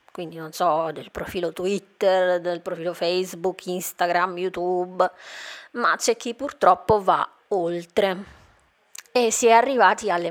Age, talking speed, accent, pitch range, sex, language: 20-39, 130 wpm, native, 175-220 Hz, female, Italian